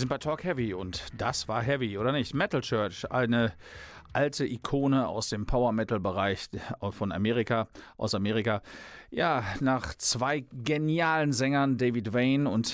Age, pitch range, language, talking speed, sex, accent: 40-59, 105-130 Hz, German, 145 wpm, male, German